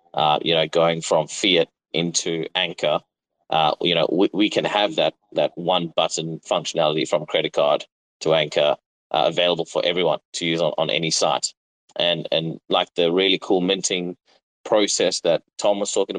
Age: 30-49